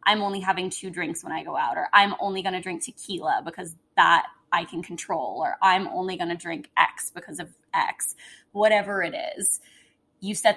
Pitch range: 180-210 Hz